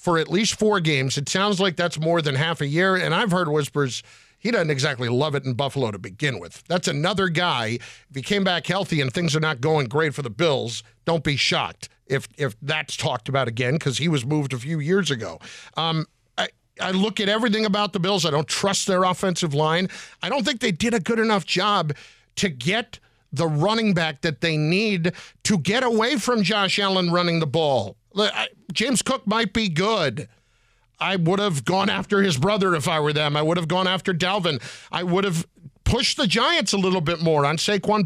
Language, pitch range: English, 150-200 Hz